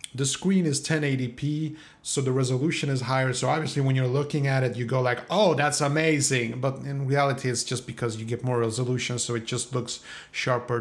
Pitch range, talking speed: 125-155 Hz, 205 wpm